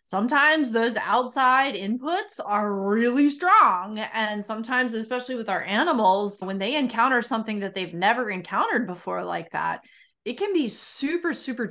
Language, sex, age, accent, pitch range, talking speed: English, female, 30-49, American, 180-230 Hz, 150 wpm